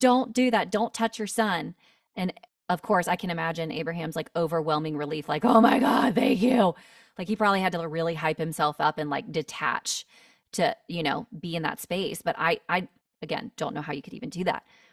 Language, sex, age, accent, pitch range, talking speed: English, female, 20-39, American, 160-220 Hz, 215 wpm